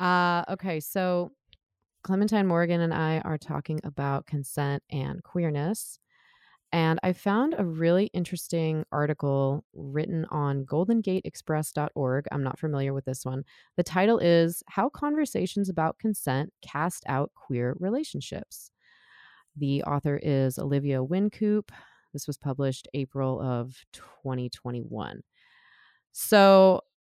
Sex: female